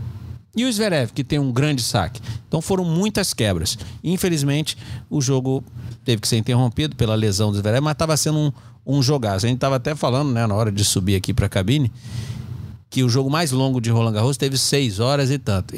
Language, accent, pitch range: Portuguese, Brazilian, 110-150 Hz